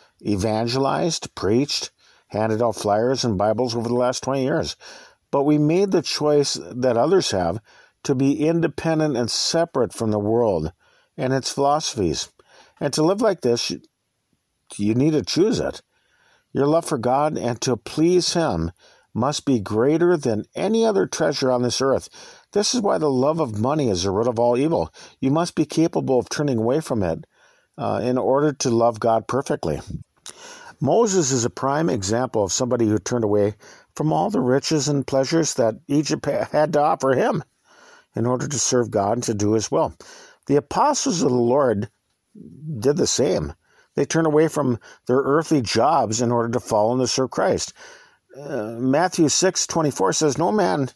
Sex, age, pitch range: male, 50-69, 115-155 Hz